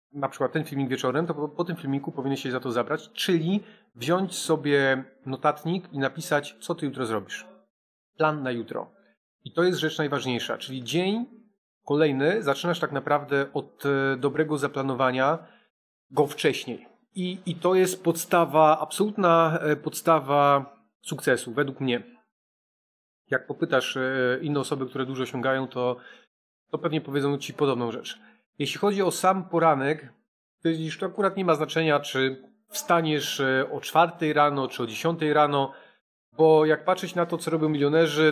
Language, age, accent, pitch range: Polish, 30-49, native, 135-170 Hz